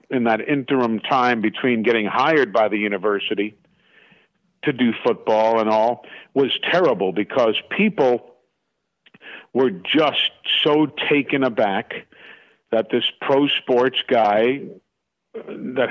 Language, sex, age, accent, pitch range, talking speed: English, male, 50-69, American, 110-130 Hz, 115 wpm